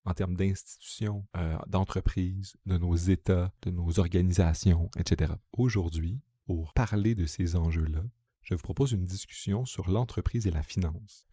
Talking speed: 150 wpm